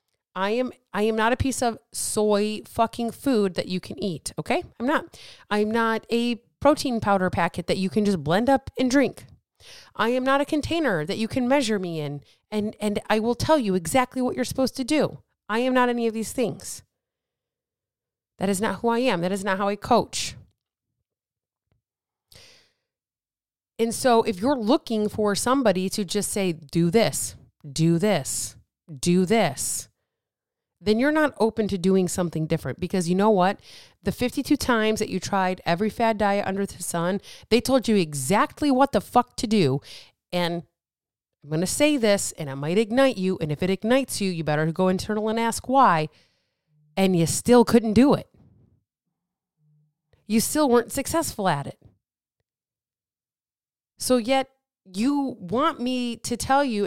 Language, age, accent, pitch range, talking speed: English, 30-49, American, 180-245 Hz, 175 wpm